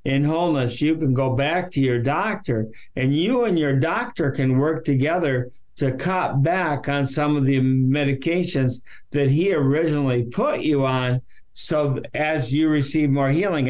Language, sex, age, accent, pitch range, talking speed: English, male, 60-79, American, 130-155 Hz, 160 wpm